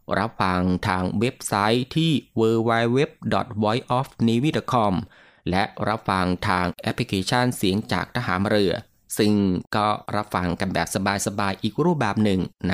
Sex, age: male, 20-39